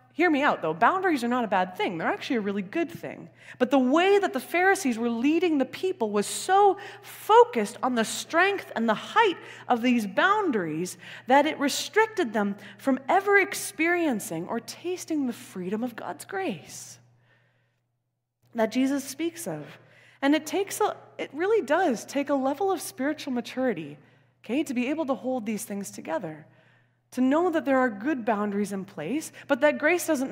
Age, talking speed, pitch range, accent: 20-39, 180 wpm, 180-290 Hz, American